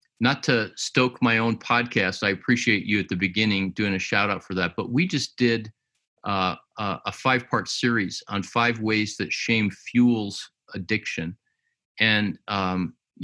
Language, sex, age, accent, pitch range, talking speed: English, male, 50-69, American, 100-120 Hz, 165 wpm